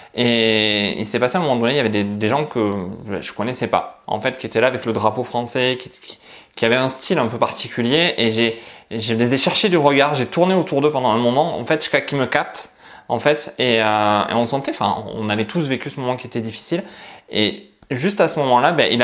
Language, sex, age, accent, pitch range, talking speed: French, male, 20-39, French, 115-145 Hz, 260 wpm